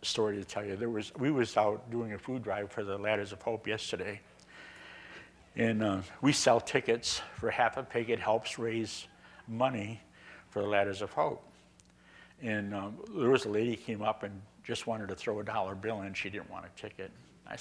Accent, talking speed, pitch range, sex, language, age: American, 210 wpm, 105-145 Hz, male, English, 60-79